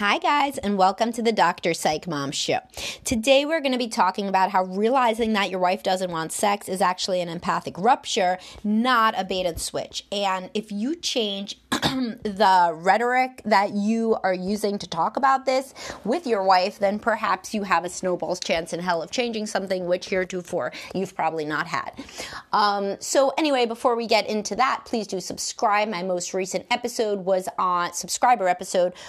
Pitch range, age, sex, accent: 170-220 Hz, 30-49, female, American